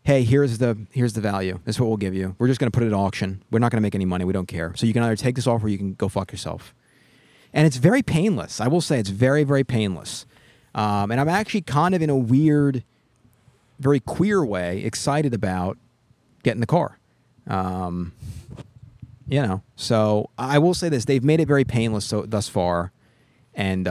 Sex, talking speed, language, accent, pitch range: male, 220 wpm, English, American, 110-140 Hz